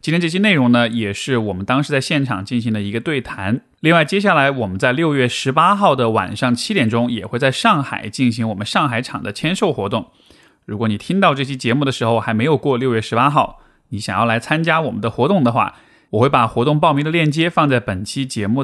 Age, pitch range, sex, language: 20-39, 115-145 Hz, male, Chinese